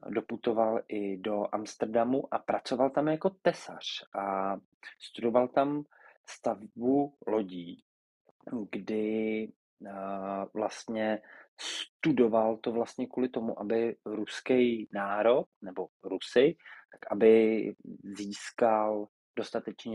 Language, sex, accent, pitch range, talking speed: Czech, male, native, 105-120 Hz, 95 wpm